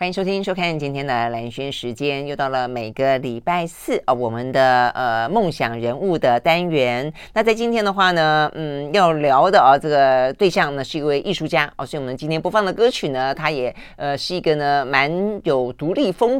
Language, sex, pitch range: Chinese, female, 135-190 Hz